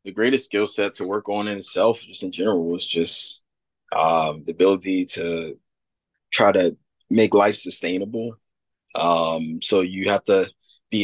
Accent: American